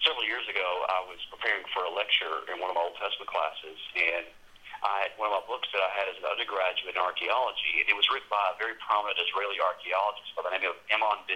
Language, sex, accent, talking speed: English, male, American, 245 wpm